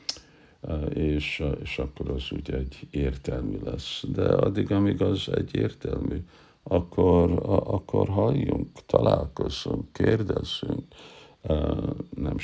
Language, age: Hungarian, 60-79